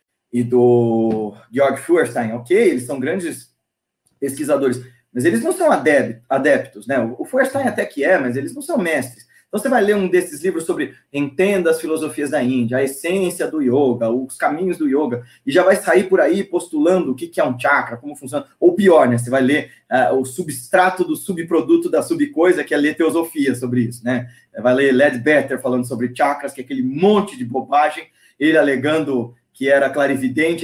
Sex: male